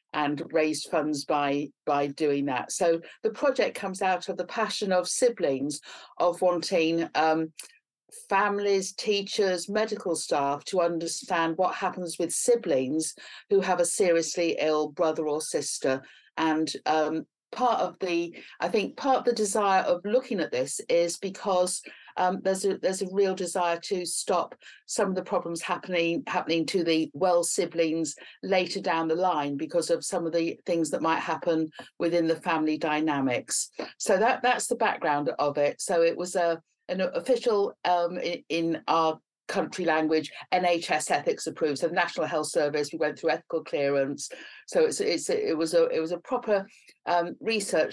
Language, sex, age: English, female, 50-69